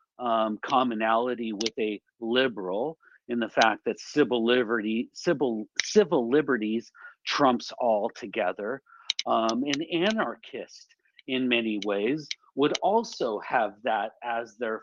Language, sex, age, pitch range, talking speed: English, male, 40-59, 115-145 Hz, 115 wpm